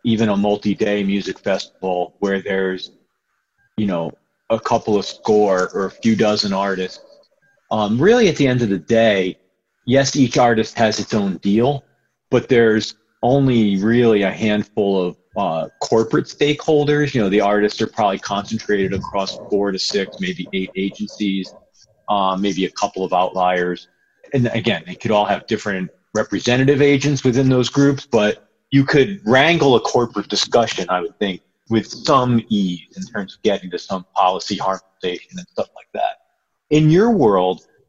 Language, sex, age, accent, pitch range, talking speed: English, male, 40-59, American, 100-135 Hz, 165 wpm